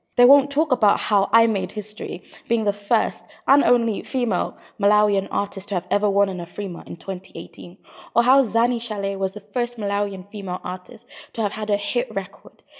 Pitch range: 185-230 Hz